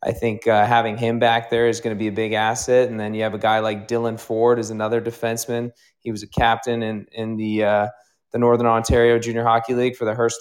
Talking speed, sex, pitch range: 250 wpm, male, 110-120 Hz